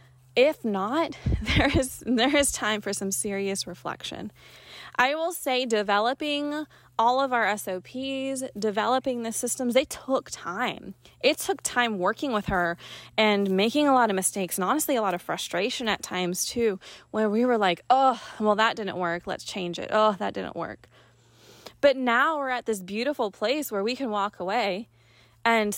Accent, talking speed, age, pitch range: American, 175 wpm, 20-39, 190-255 Hz